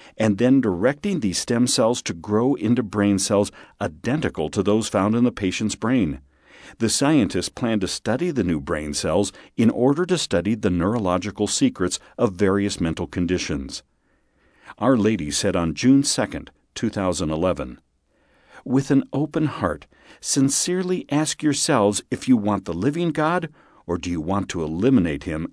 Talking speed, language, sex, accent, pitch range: 155 wpm, English, male, American, 90-130 Hz